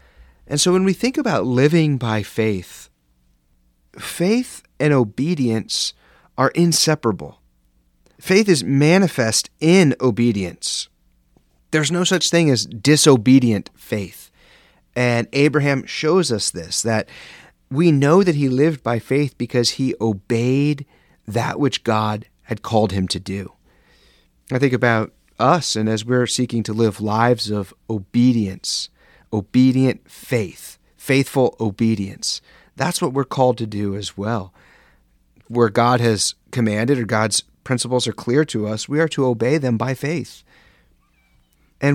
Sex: male